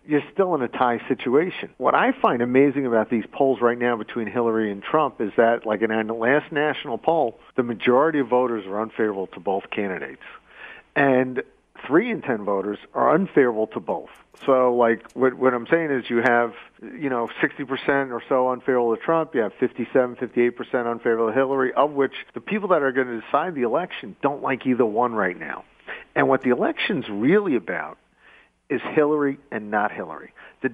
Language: English